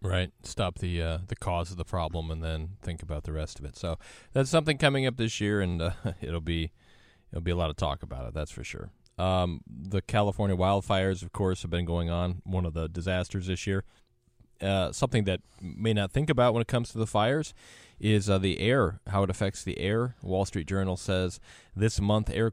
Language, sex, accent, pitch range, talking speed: English, male, American, 85-100 Hz, 225 wpm